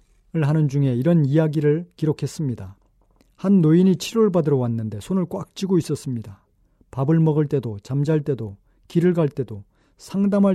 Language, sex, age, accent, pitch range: Korean, male, 40-59, native, 125-175 Hz